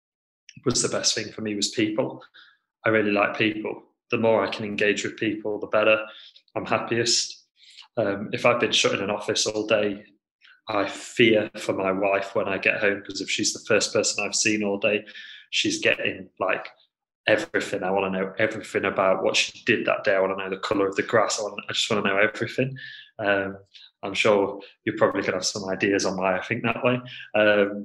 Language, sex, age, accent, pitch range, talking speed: English, male, 20-39, British, 100-115 Hz, 215 wpm